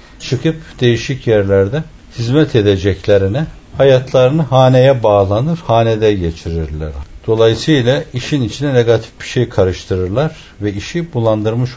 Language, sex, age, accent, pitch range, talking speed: Turkish, male, 60-79, native, 105-145 Hz, 100 wpm